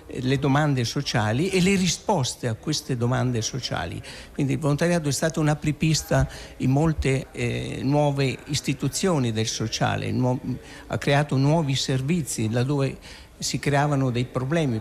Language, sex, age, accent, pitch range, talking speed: Italian, male, 60-79, native, 130-175 Hz, 135 wpm